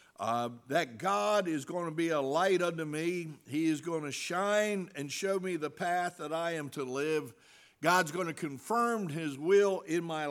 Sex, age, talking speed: male, 60-79, 190 wpm